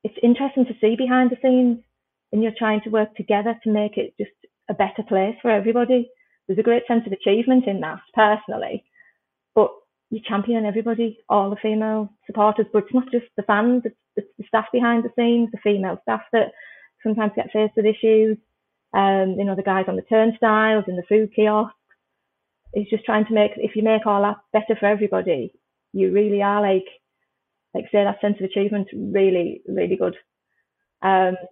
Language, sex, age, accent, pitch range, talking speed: English, female, 30-49, British, 195-230 Hz, 195 wpm